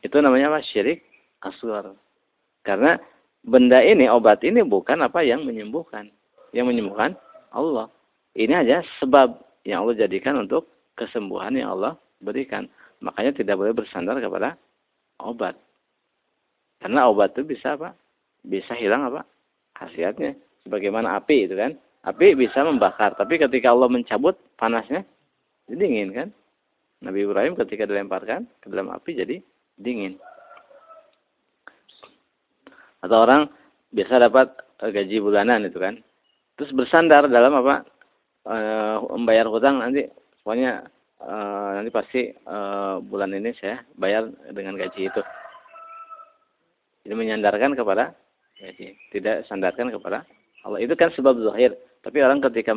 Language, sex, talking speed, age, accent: Indonesian, male, 125 wpm, 50-69, native